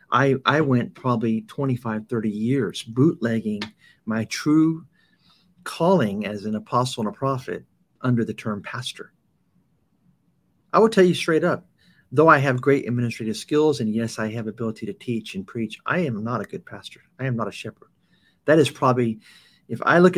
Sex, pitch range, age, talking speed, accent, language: male, 110-145 Hz, 50-69, 175 wpm, American, English